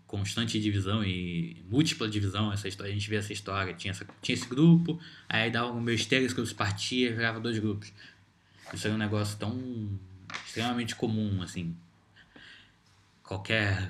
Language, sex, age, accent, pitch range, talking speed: Portuguese, male, 20-39, Brazilian, 95-110 Hz, 165 wpm